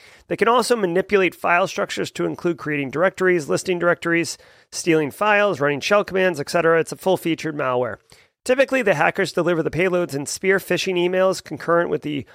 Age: 30-49